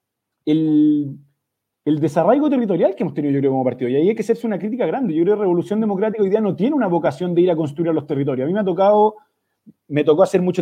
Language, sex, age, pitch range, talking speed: Spanish, male, 30-49, 170-220 Hz, 255 wpm